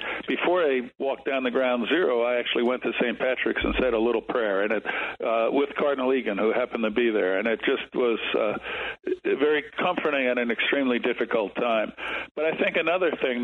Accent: American